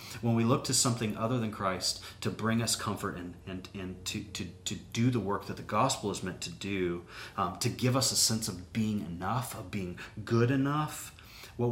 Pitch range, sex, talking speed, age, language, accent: 95-120 Hz, male, 210 wpm, 30-49, English, American